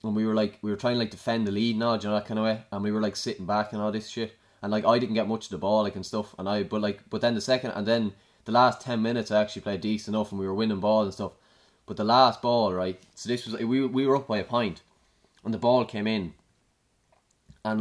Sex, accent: male, Irish